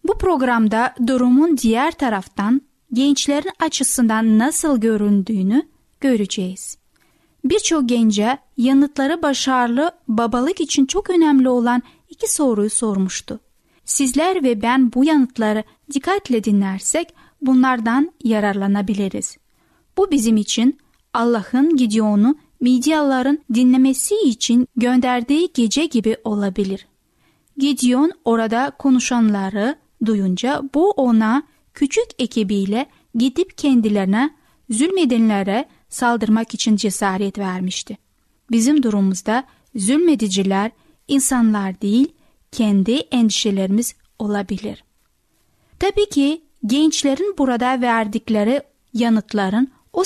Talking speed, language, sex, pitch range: 90 wpm, Turkish, female, 220-285 Hz